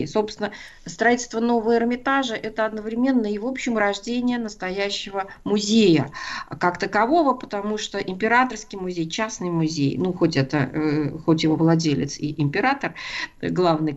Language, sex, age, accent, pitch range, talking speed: Russian, female, 40-59, native, 175-220 Hz, 120 wpm